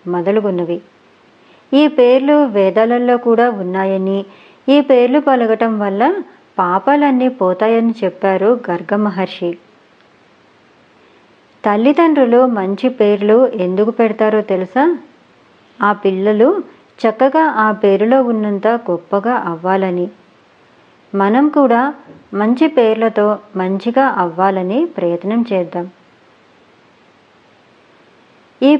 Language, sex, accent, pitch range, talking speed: Telugu, male, native, 195-255 Hz, 75 wpm